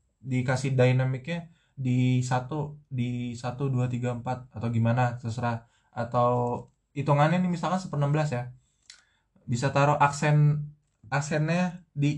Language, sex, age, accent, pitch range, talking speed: Indonesian, male, 20-39, native, 125-160 Hz, 100 wpm